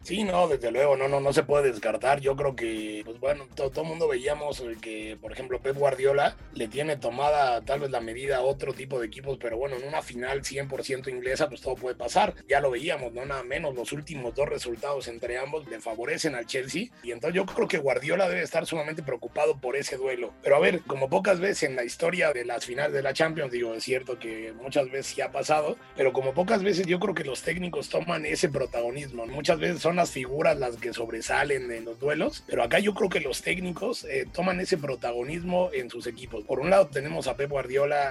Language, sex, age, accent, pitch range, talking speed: Spanish, male, 30-49, Mexican, 125-155 Hz, 225 wpm